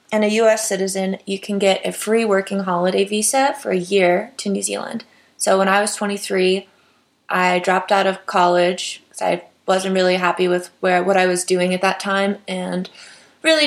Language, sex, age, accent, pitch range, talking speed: English, female, 20-39, American, 180-205 Hz, 190 wpm